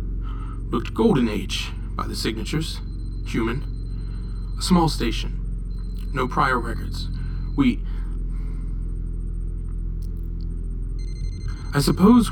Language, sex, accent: English, male, American